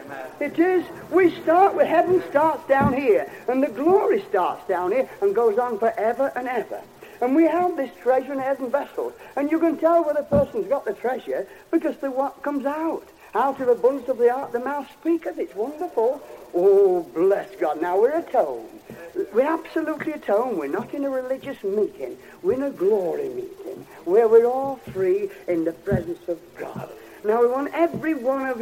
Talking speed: 190 wpm